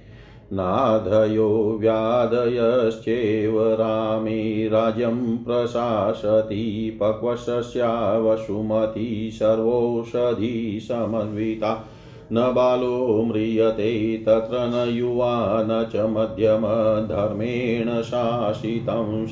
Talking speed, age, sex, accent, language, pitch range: 45 wpm, 40-59, male, native, Hindi, 110-120 Hz